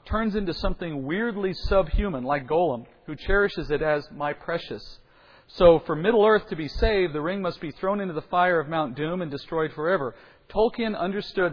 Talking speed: 185 wpm